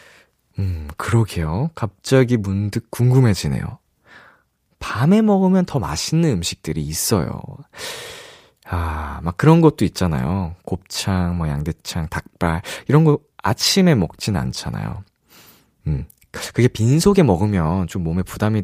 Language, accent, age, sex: Korean, native, 20-39, male